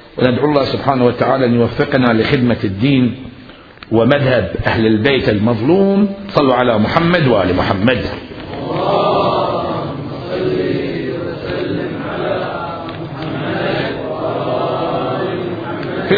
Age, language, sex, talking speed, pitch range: 50-69, Arabic, male, 65 wpm, 110-160 Hz